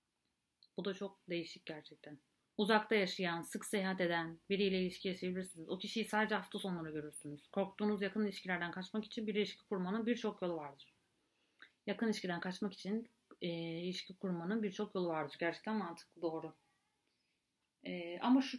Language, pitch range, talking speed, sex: Turkish, 170-235 Hz, 150 wpm, female